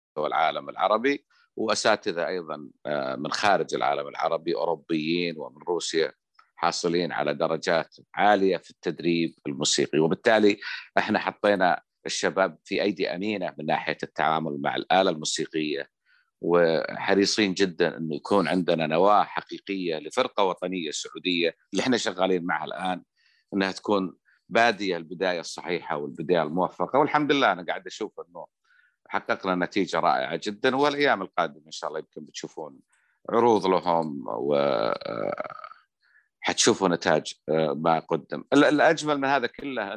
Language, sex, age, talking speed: Arabic, male, 50-69, 120 wpm